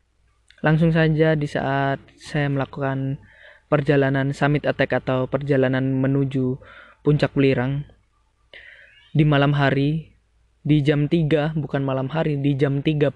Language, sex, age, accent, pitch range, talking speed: Indonesian, male, 20-39, native, 130-160 Hz, 120 wpm